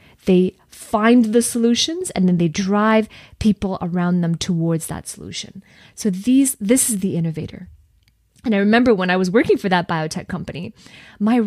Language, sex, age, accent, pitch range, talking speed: English, female, 20-39, American, 170-220 Hz, 170 wpm